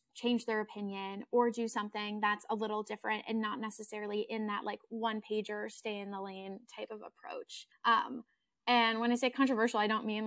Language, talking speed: English, 200 wpm